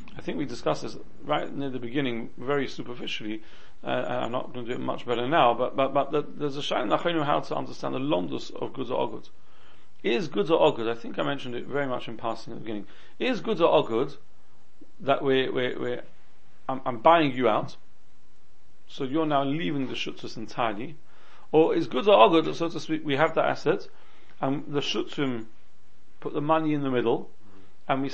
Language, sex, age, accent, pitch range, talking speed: English, male, 40-59, British, 130-160 Hz, 210 wpm